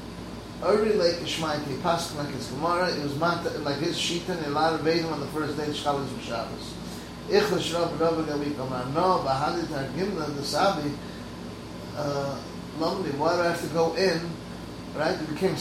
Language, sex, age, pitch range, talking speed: English, male, 30-49, 130-170 Hz, 110 wpm